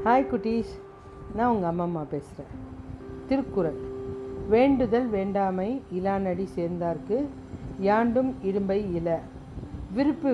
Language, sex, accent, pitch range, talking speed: Tamil, female, native, 170-225 Hz, 95 wpm